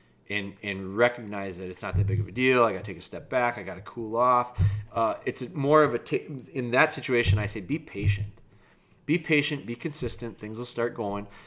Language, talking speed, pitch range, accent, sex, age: English, 225 wpm, 105-135 Hz, American, male, 30-49